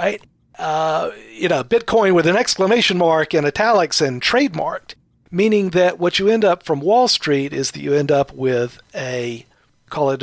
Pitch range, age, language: 140-195 Hz, 50-69, English